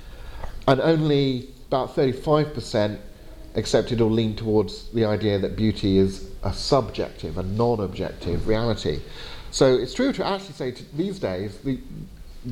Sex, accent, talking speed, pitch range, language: male, British, 135 wpm, 95-130 Hz, English